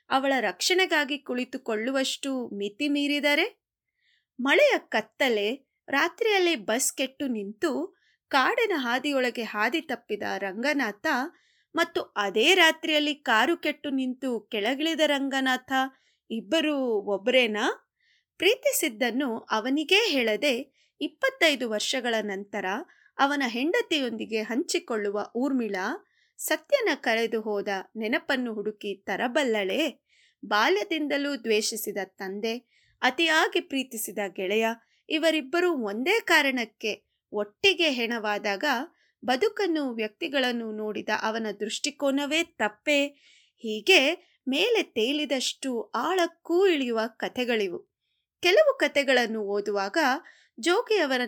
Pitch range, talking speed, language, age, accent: 225-320 Hz, 80 wpm, Kannada, 20-39, native